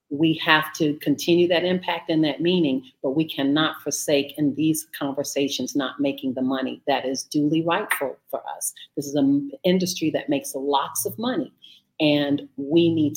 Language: English